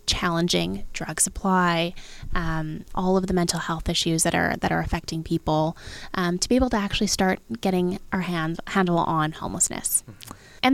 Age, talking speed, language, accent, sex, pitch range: 20-39, 170 wpm, English, American, female, 190-225 Hz